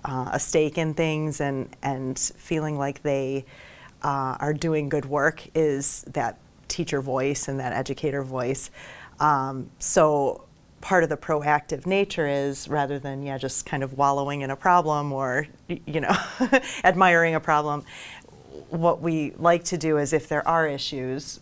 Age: 30-49